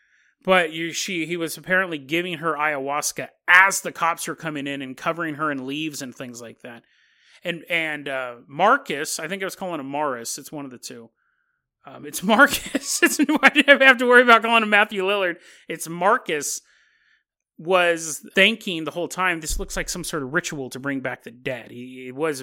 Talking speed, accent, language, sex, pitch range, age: 210 wpm, American, English, male, 155-210 Hz, 30-49